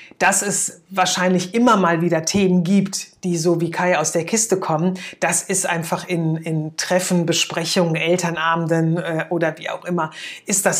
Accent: German